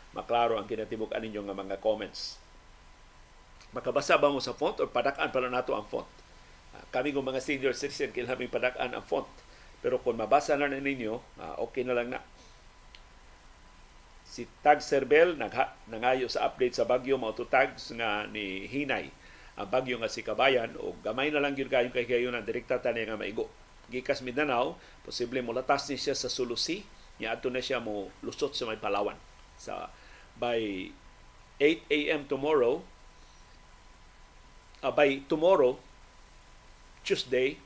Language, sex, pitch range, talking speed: Filipino, male, 100-140 Hz, 150 wpm